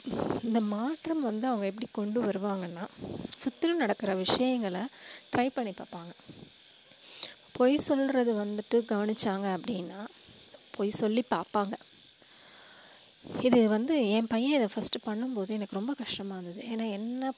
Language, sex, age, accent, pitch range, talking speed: Tamil, female, 20-39, native, 200-250 Hz, 115 wpm